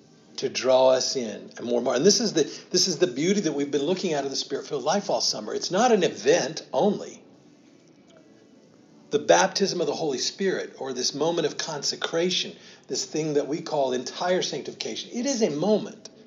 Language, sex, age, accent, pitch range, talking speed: English, male, 50-69, American, 145-225 Hz, 200 wpm